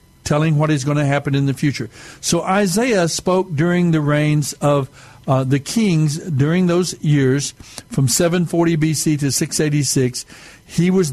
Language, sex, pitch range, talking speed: English, male, 140-175 Hz, 155 wpm